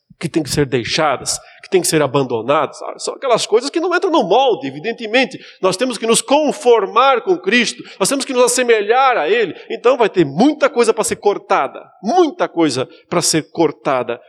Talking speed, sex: 195 wpm, male